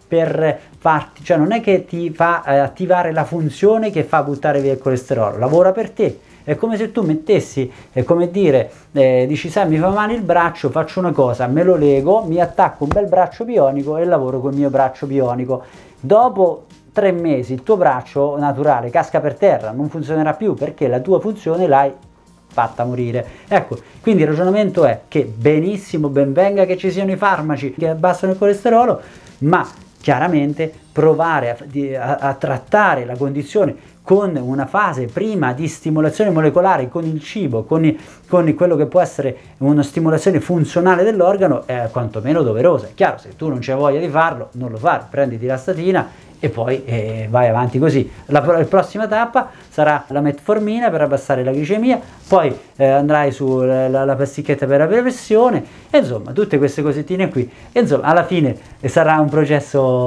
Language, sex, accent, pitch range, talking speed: Italian, male, native, 135-180 Hz, 175 wpm